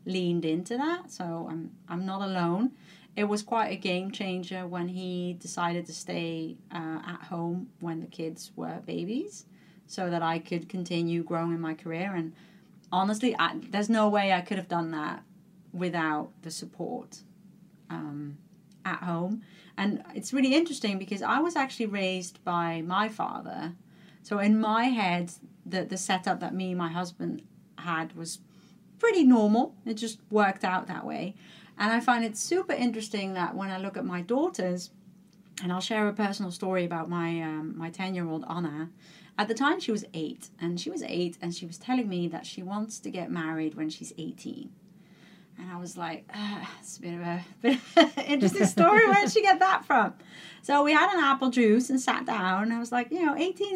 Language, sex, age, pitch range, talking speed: English, female, 30-49, 175-225 Hz, 195 wpm